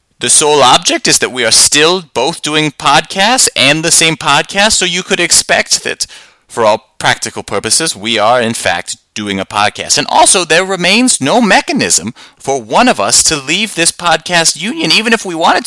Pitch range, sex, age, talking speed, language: 125-180 Hz, male, 30-49, 190 wpm, English